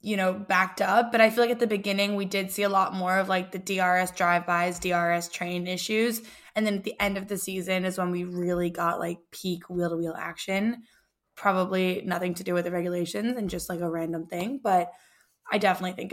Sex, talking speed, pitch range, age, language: female, 220 wpm, 180-210 Hz, 10-29, English